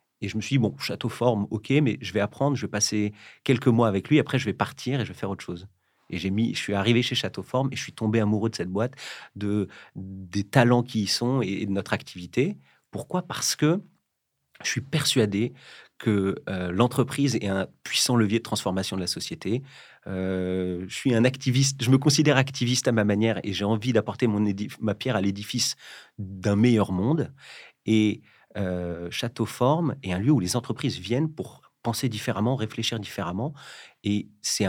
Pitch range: 100-130 Hz